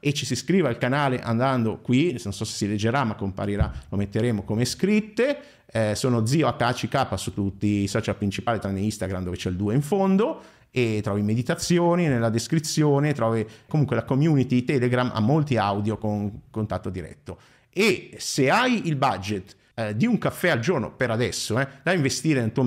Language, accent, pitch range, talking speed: Italian, native, 105-135 Hz, 185 wpm